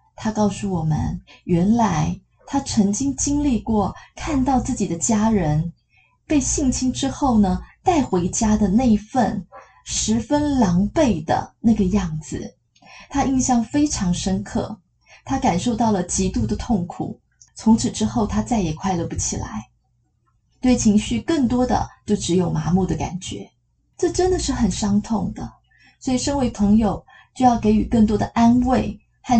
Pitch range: 185-250 Hz